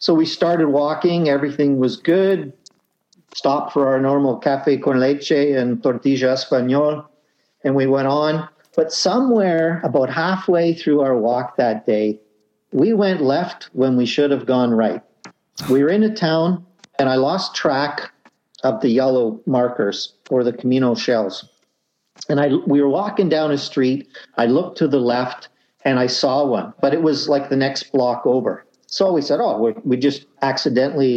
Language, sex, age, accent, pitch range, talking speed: English, male, 50-69, American, 130-155 Hz, 170 wpm